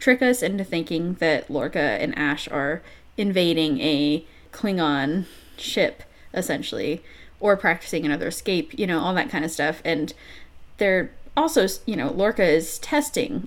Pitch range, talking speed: 165-235 Hz, 145 wpm